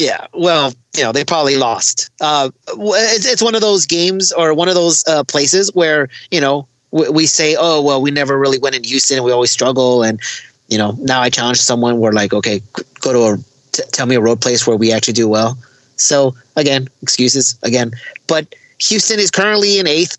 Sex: male